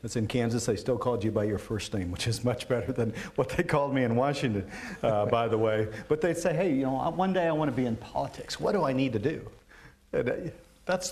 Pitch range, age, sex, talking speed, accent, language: 110-140 Hz, 50-69, male, 260 wpm, American, English